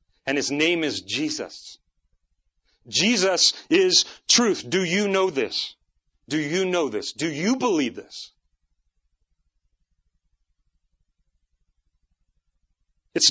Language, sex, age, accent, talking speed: English, male, 40-59, American, 95 wpm